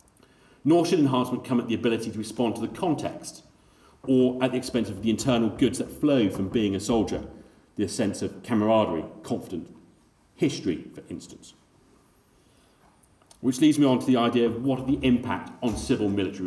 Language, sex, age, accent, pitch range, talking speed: English, male, 40-59, British, 95-130 Hz, 175 wpm